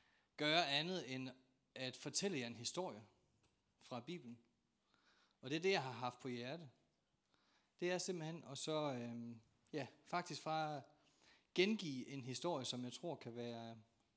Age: 30-49